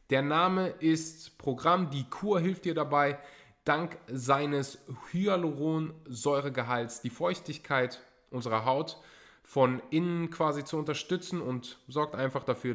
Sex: male